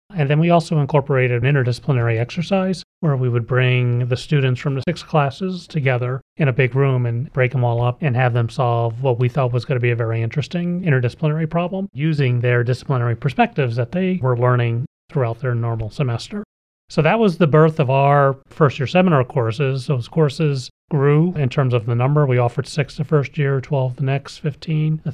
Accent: American